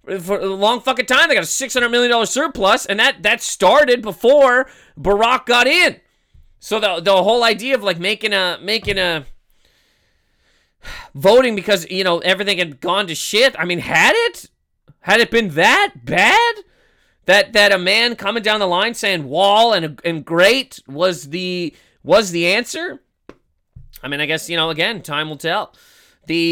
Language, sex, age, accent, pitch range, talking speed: English, male, 30-49, American, 170-230 Hz, 175 wpm